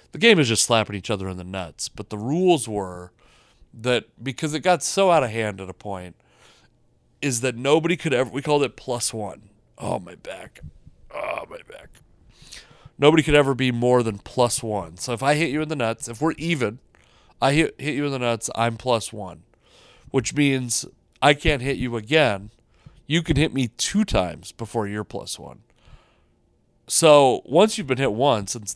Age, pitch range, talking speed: 30-49, 110-145 Hz, 195 wpm